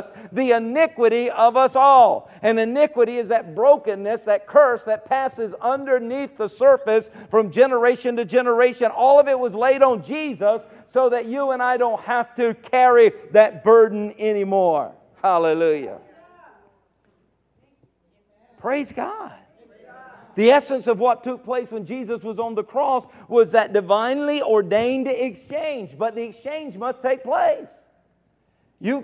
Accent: American